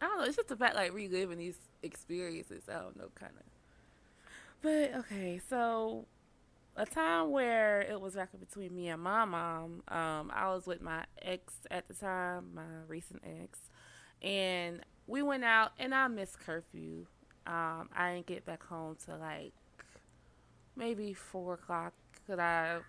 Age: 20-39